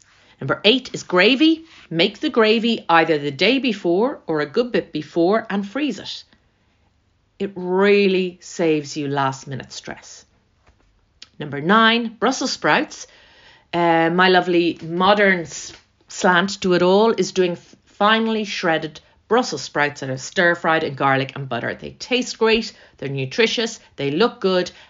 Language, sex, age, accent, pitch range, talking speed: English, female, 40-59, Irish, 145-210 Hz, 145 wpm